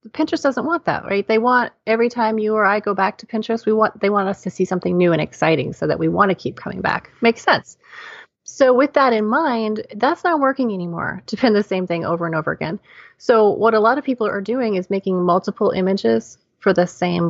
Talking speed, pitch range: 245 wpm, 180-230 Hz